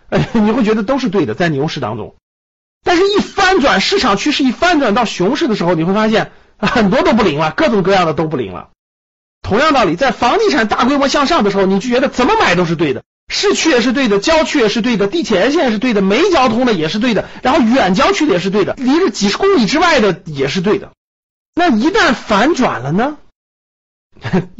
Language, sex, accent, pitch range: Chinese, male, native, 160-245 Hz